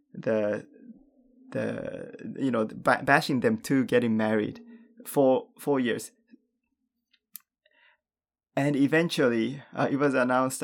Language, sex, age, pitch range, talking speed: English, male, 20-39, 115-155 Hz, 100 wpm